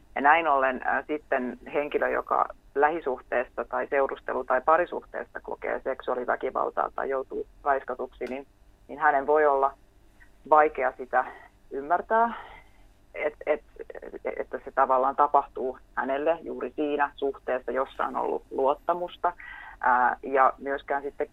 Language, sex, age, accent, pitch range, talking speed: English, female, 30-49, Finnish, 130-160 Hz, 105 wpm